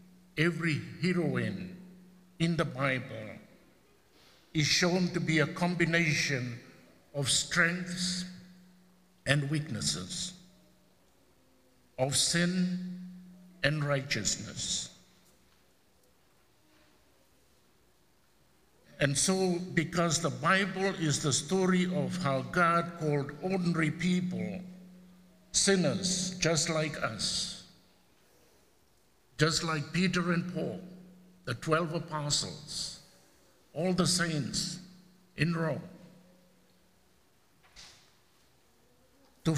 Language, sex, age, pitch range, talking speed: English, male, 60-79, 150-180 Hz, 75 wpm